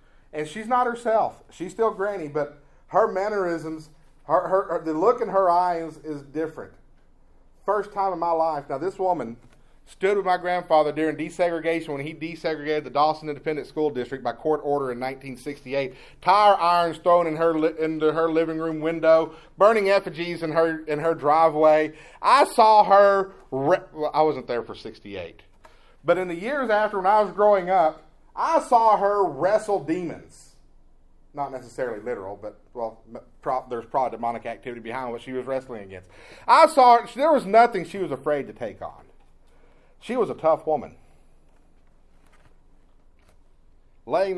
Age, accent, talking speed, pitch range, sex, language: 30-49, American, 165 wpm, 130-185 Hz, male, English